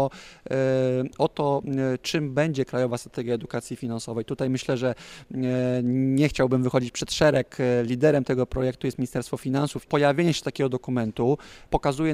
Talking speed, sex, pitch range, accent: 145 wpm, male, 125-150 Hz, native